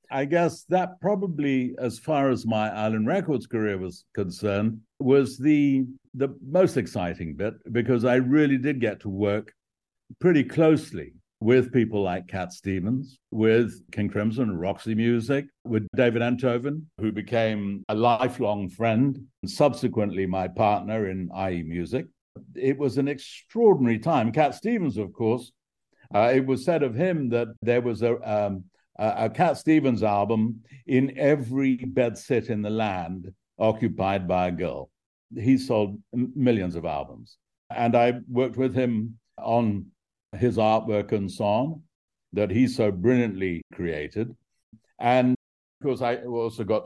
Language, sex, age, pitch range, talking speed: English, male, 60-79, 105-135 Hz, 145 wpm